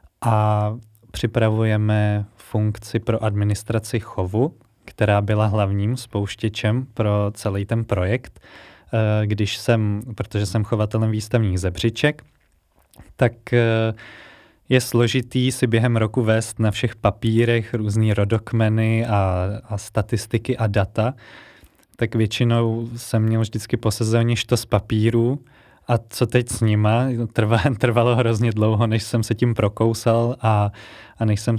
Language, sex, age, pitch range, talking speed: Slovak, male, 20-39, 105-120 Hz, 125 wpm